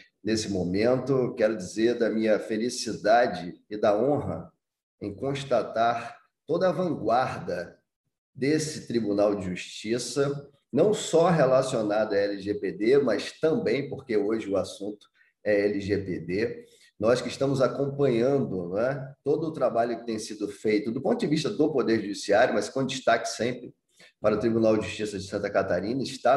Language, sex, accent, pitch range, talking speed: Portuguese, male, Brazilian, 115-145 Hz, 150 wpm